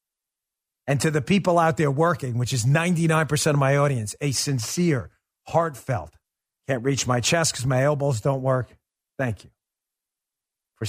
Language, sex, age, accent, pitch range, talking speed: English, male, 40-59, American, 120-145 Hz, 155 wpm